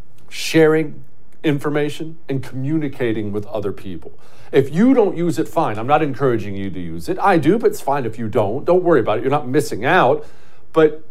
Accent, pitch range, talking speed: American, 110-175 Hz, 200 wpm